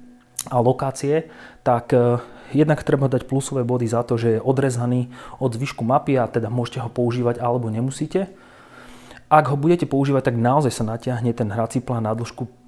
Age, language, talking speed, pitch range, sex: 30-49, Slovak, 170 wpm, 115-130 Hz, male